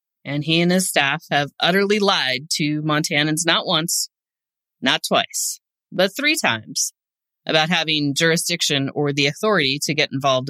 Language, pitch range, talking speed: English, 145-195 Hz, 150 wpm